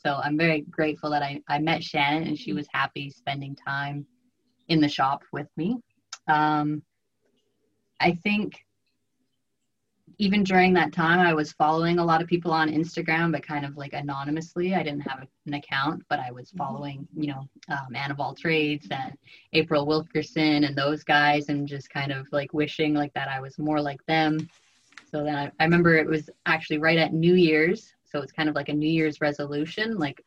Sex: female